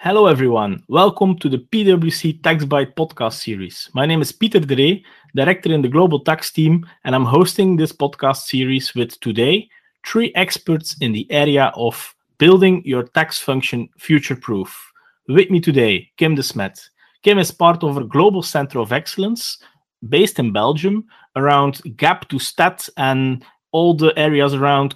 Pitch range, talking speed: 130-165 Hz, 160 wpm